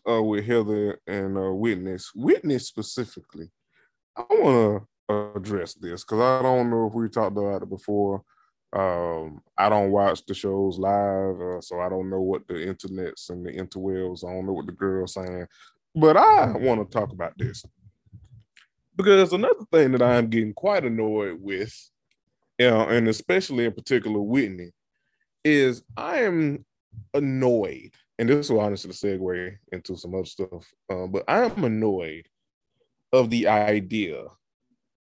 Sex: male